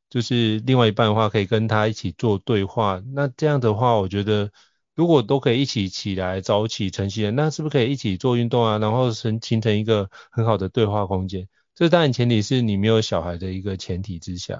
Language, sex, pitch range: Chinese, male, 100-120 Hz